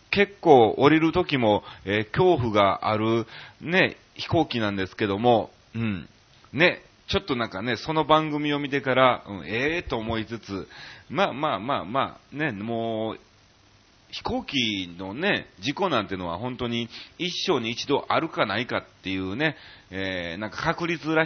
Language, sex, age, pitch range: Japanese, male, 30-49, 95-135 Hz